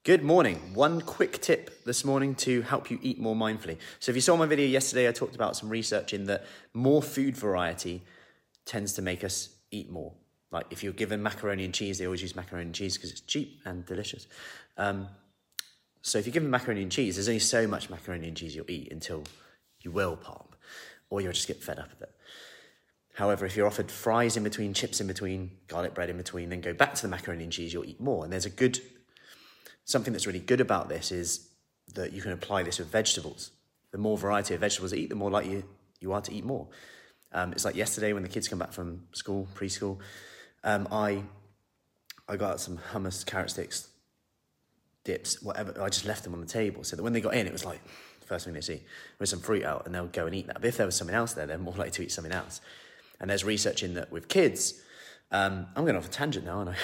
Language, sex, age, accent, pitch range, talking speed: English, male, 30-49, British, 90-110 Hz, 235 wpm